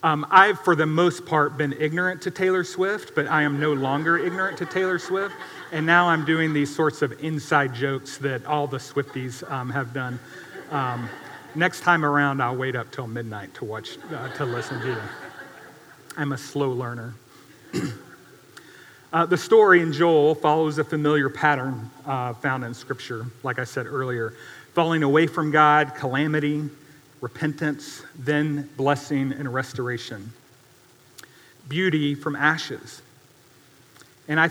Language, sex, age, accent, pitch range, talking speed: English, male, 40-59, American, 135-160 Hz, 155 wpm